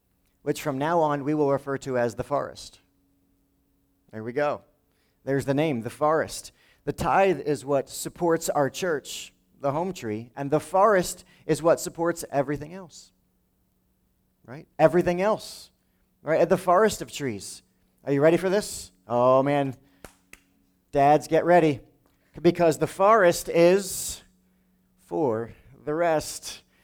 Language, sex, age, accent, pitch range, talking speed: English, male, 40-59, American, 115-155 Hz, 140 wpm